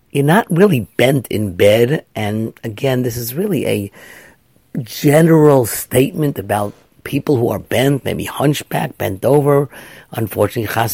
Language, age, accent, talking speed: English, 50-69, American, 135 wpm